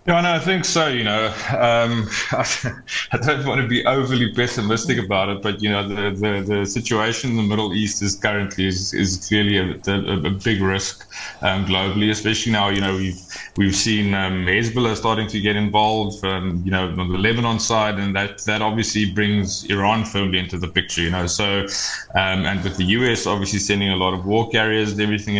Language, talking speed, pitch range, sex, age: English, 210 wpm, 95-110 Hz, male, 20-39